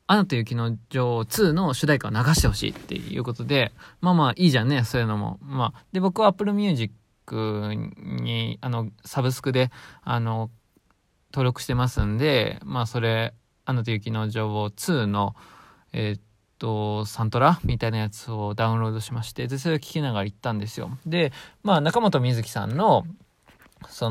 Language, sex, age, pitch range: Japanese, male, 20-39, 110-145 Hz